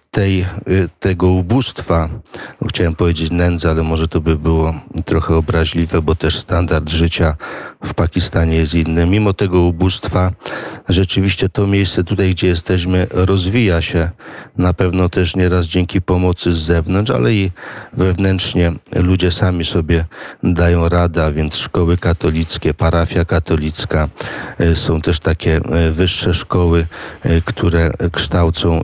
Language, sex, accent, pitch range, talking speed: Polish, male, native, 80-95 Hz, 125 wpm